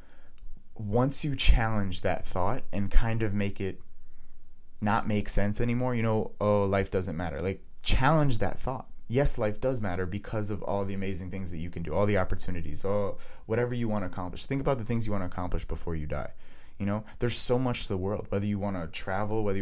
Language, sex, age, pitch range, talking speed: English, male, 20-39, 90-110 Hz, 220 wpm